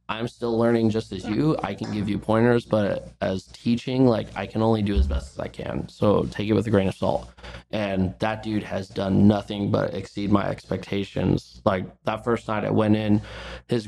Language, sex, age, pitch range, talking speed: English, male, 20-39, 95-110 Hz, 215 wpm